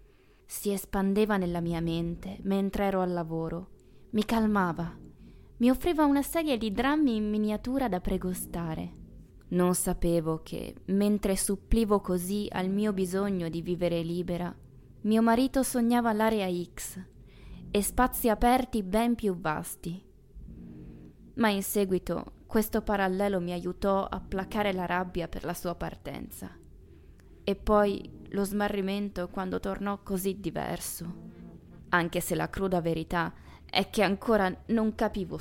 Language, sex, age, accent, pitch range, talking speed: Italian, female, 20-39, native, 165-215 Hz, 130 wpm